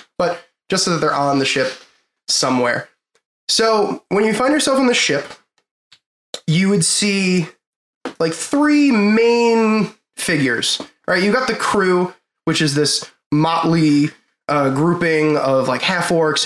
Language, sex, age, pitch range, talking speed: English, male, 20-39, 145-190 Hz, 140 wpm